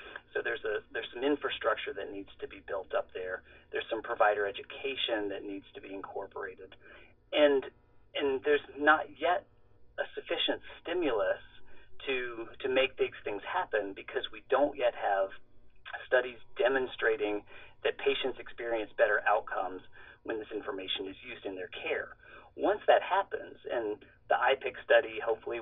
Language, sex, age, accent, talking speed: English, male, 40-59, American, 150 wpm